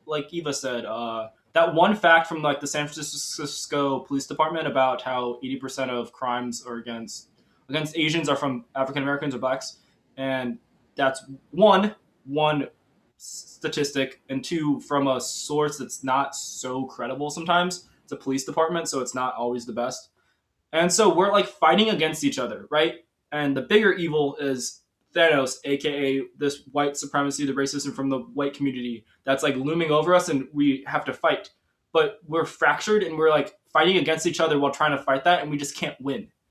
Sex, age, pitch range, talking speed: male, 20-39, 140-170 Hz, 180 wpm